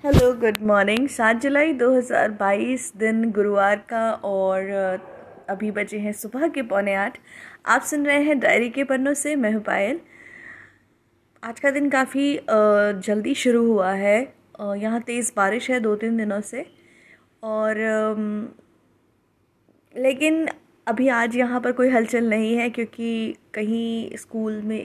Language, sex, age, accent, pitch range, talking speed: Hindi, female, 20-39, native, 205-255 Hz, 140 wpm